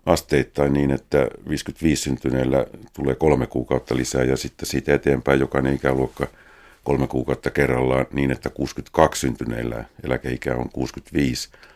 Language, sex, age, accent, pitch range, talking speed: Finnish, male, 50-69, native, 65-70 Hz, 130 wpm